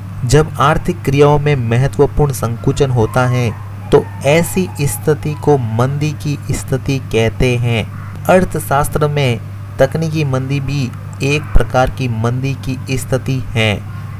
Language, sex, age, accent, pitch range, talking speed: Hindi, male, 30-49, native, 115-140 Hz, 125 wpm